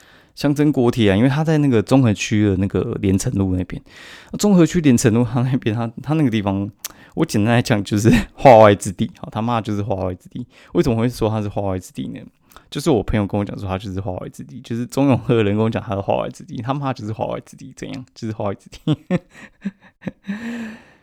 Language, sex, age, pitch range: Chinese, male, 20-39, 100-140 Hz